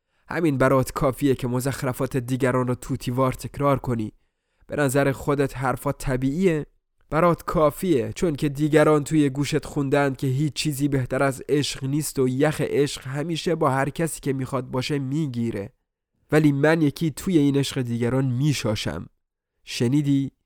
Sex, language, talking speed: male, Persian, 145 wpm